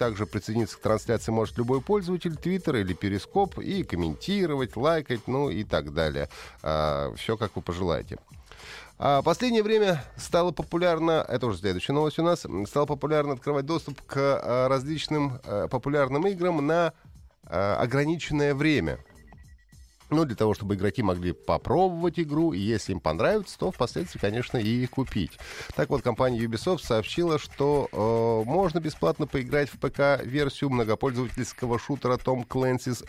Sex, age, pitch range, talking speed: male, 30-49, 115-160 Hz, 135 wpm